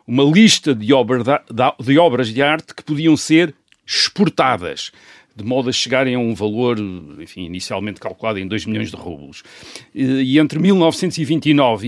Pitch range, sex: 115-150 Hz, male